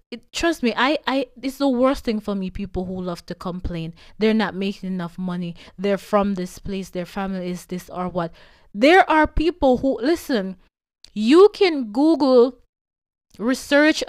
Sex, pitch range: female, 200-265 Hz